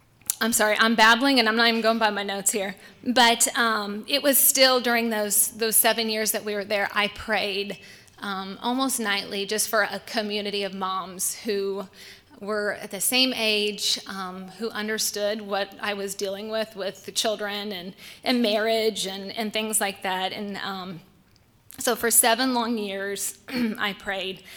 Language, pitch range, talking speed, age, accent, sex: English, 200-230 Hz, 175 wpm, 20-39, American, female